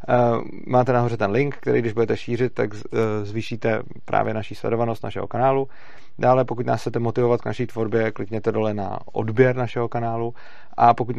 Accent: native